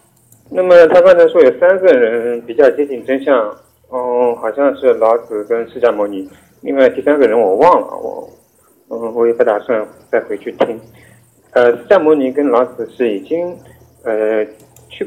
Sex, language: male, Chinese